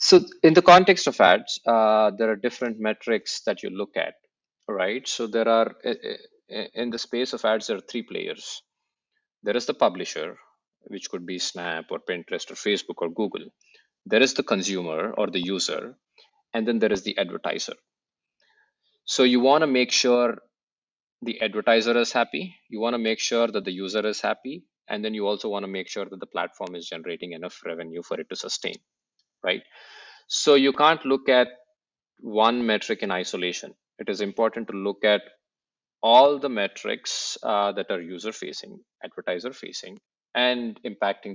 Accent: Indian